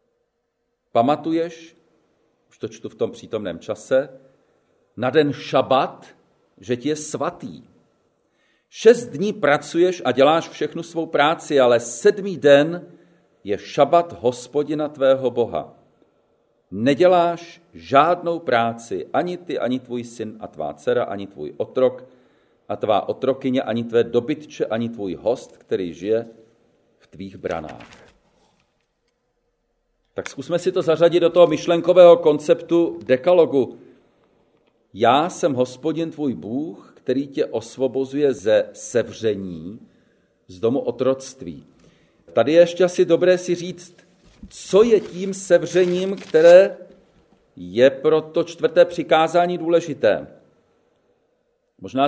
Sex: male